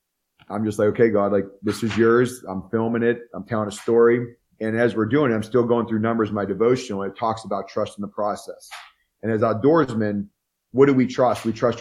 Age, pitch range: 30-49, 105-125 Hz